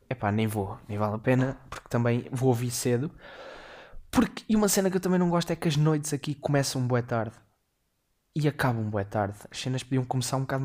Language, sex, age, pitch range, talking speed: Portuguese, male, 20-39, 115-140 Hz, 235 wpm